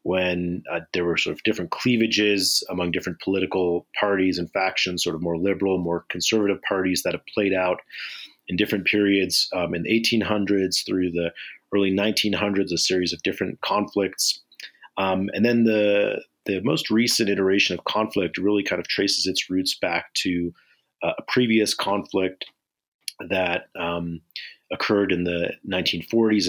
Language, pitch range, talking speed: English, 85-100 Hz, 155 wpm